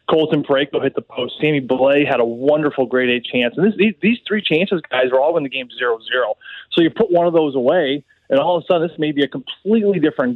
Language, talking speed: English, 265 wpm